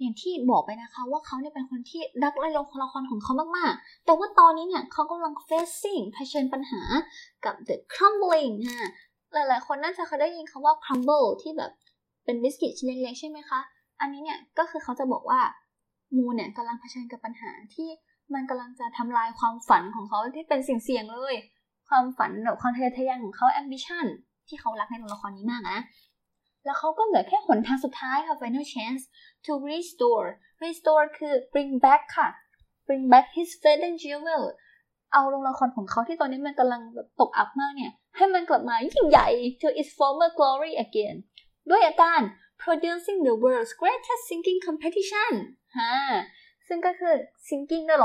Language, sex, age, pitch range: Thai, female, 10-29, 250-330 Hz